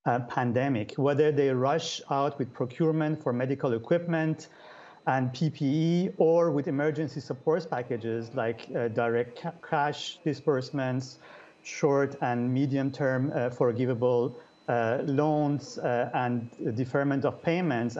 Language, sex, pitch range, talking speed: English, male, 120-155 Hz, 115 wpm